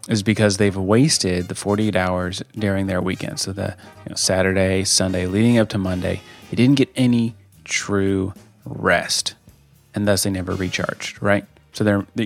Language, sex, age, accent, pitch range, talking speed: English, male, 30-49, American, 95-115 Hz, 165 wpm